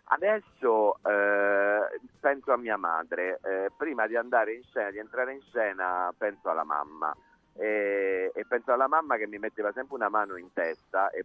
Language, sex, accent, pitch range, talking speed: Italian, male, native, 95-130 Hz, 175 wpm